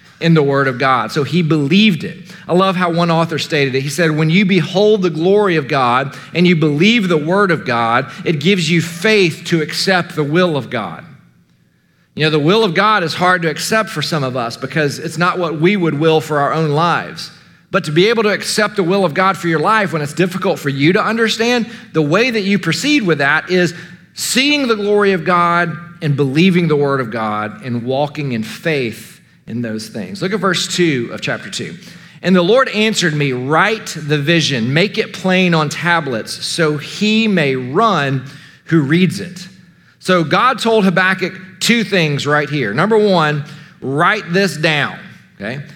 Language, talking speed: English, 200 wpm